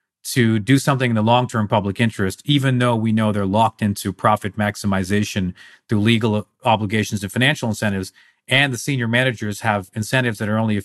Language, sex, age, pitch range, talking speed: English, male, 40-59, 105-135 Hz, 185 wpm